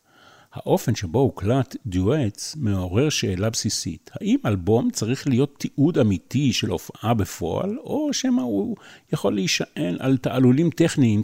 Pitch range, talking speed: 105-145 Hz, 130 wpm